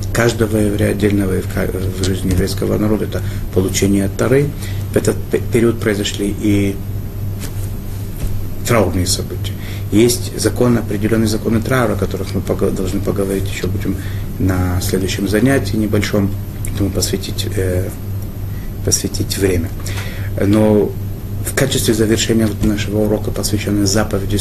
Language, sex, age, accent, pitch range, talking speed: Russian, male, 30-49, native, 95-105 Hz, 105 wpm